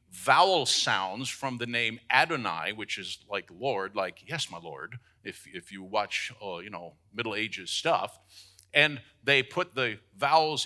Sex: male